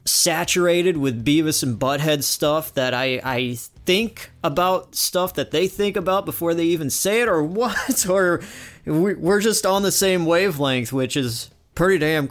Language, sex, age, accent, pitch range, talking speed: English, male, 30-49, American, 130-180 Hz, 165 wpm